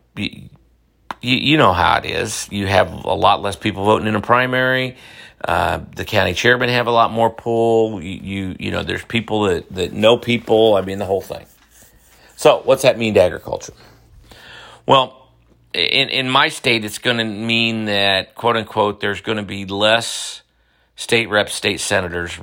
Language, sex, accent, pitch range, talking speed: English, male, American, 95-115 Hz, 180 wpm